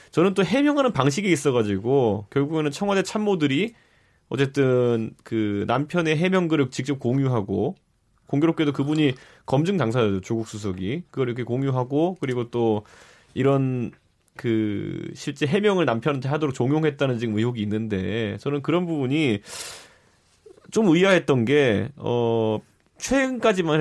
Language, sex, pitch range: Korean, male, 115-165 Hz